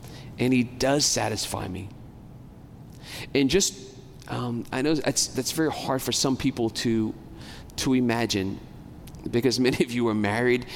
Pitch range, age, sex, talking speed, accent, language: 125-170 Hz, 40-59, male, 145 wpm, American, English